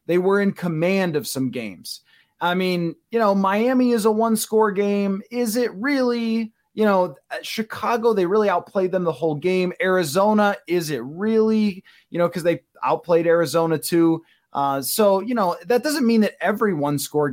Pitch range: 160-215 Hz